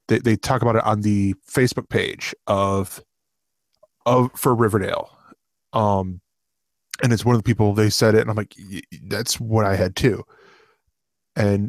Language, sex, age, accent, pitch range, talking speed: English, male, 20-39, American, 105-130 Hz, 170 wpm